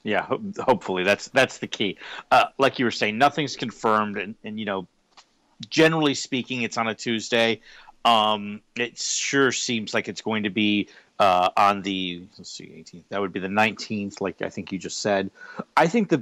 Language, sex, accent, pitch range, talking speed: English, male, American, 100-125 Hz, 190 wpm